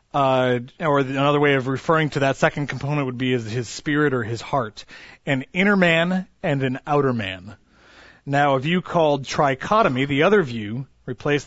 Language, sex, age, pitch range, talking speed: English, male, 30-49, 125-155 Hz, 175 wpm